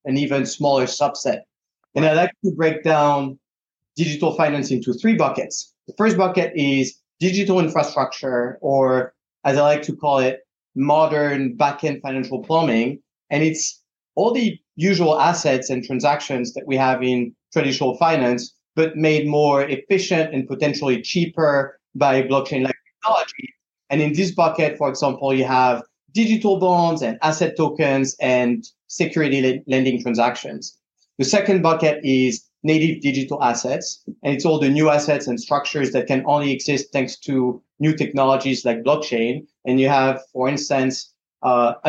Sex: male